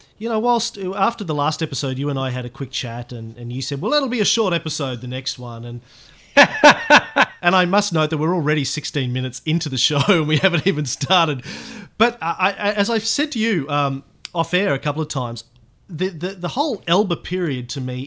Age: 30-49